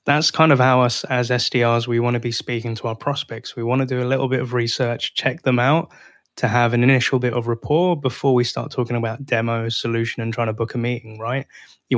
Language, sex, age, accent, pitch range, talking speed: English, male, 10-29, British, 115-130 Hz, 245 wpm